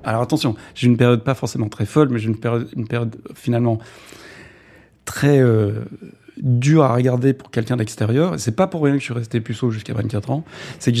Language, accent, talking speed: French, French, 220 wpm